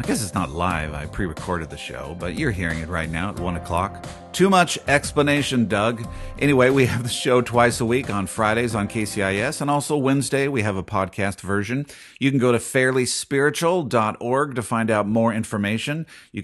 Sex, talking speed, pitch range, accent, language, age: male, 195 wpm, 95-130 Hz, American, English, 50-69